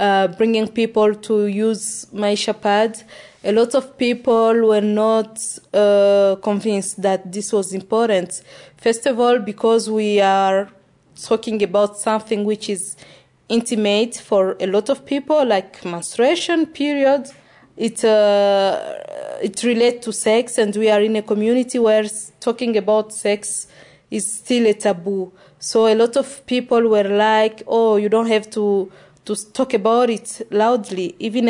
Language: English